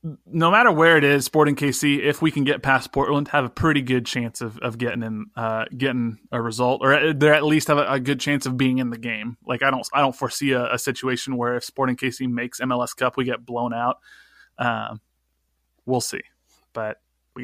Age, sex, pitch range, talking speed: 20-39, male, 120-140 Hz, 225 wpm